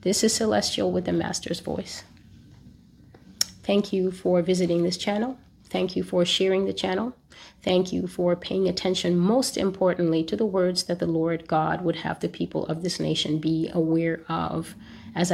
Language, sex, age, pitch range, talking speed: English, female, 30-49, 175-225 Hz, 170 wpm